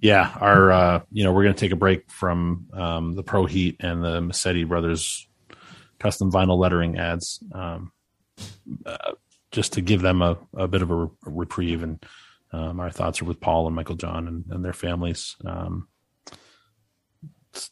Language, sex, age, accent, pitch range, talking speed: English, male, 30-49, American, 85-95 Hz, 175 wpm